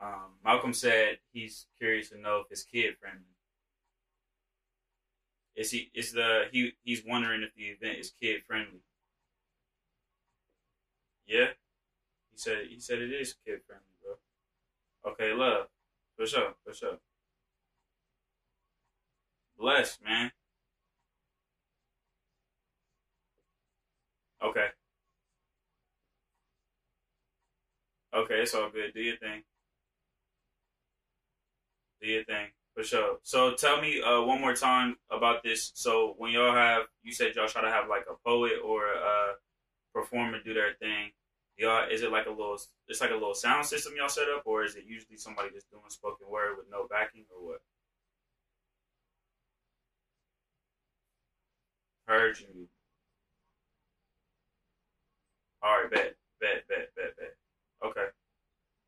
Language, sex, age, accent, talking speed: English, male, 20-39, American, 125 wpm